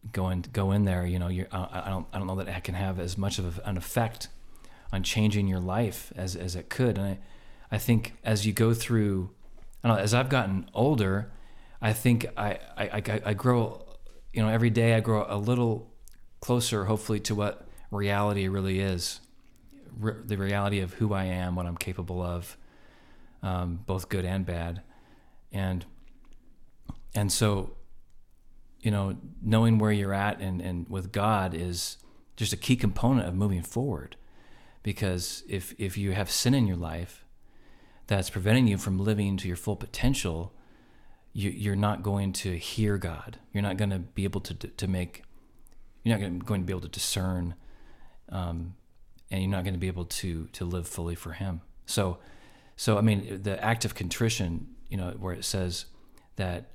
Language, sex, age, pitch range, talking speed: English, male, 40-59, 90-110 Hz, 185 wpm